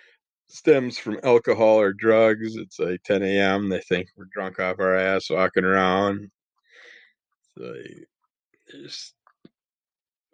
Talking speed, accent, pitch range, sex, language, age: 120 wpm, American, 100-120 Hz, male, English, 20-39